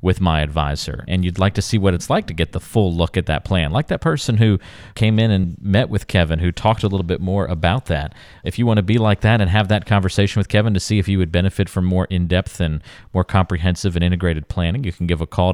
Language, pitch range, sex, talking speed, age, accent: English, 85-105 Hz, male, 275 wpm, 40-59, American